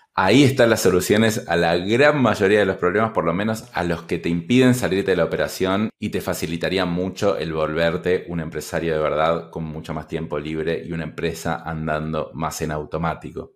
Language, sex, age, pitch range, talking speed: Spanish, male, 20-39, 90-115 Hz, 200 wpm